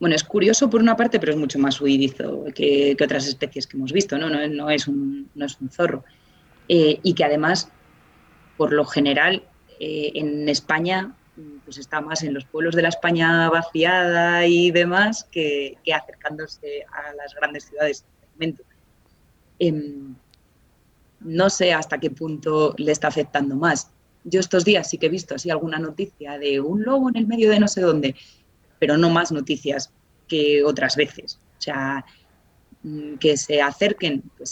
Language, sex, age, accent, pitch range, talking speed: Spanish, female, 30-49, Spanish, 145-190 Hz, 170 wpm